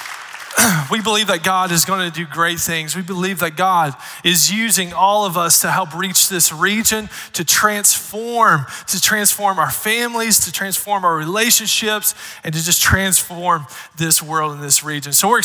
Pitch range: 180-225 Hz